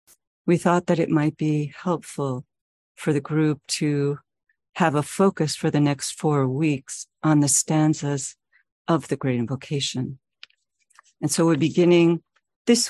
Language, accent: English, American